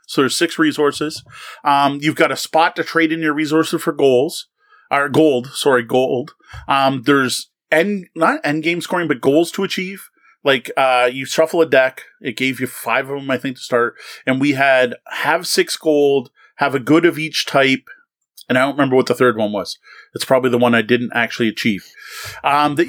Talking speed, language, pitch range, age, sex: 205 wpm, English, 130-170 Hz, 30-49, male